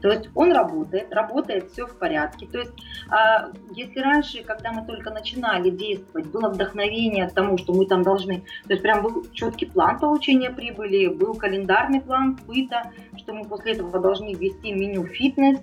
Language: Russian